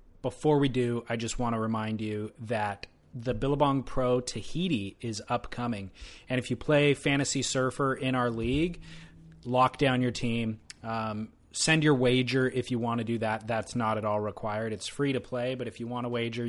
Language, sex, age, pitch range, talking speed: English, male, 30-49, 110-130 Hz, 195 wpm